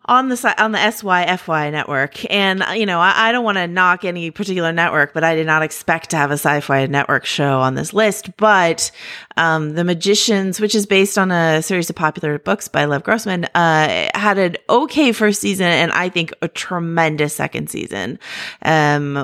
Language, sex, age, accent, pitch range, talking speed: English, female, 30-49, American, 155-195 Hz, 195 wpm